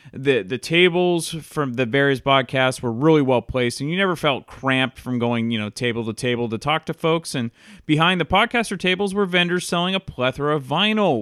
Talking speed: 210 wpm